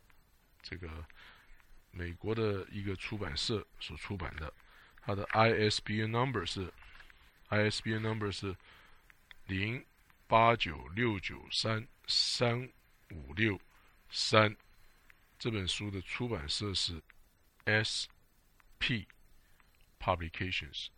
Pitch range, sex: 80-110 Hz, male